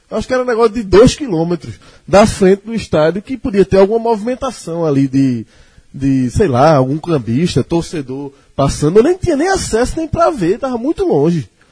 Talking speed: 190 wpm